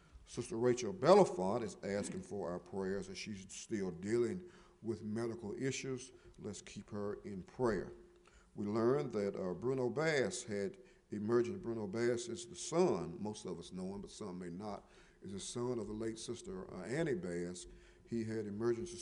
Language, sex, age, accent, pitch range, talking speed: English, male, 50-69, American, 90-125 Hz, 170 wpm